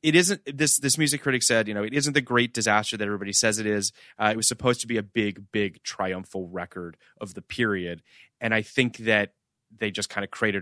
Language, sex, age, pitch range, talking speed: English, male, 30-49, 100-125 Hz, 235 wpm